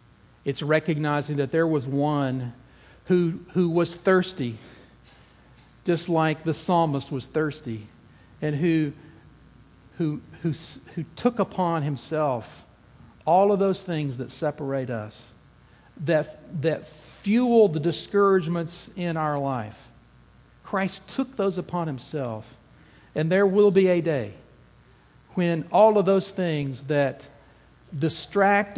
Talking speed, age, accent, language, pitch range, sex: 120 wpm, 50-69, American, English, 145-185 Hz, male